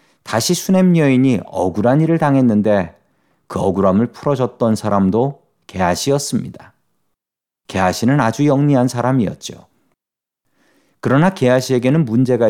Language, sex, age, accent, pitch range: Korean, male, 40-59, native, 100-145 Hz